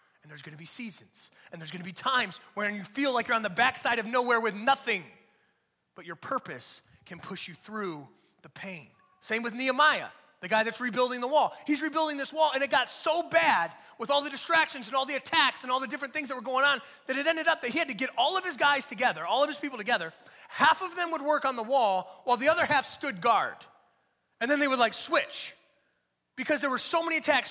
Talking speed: 245 wpm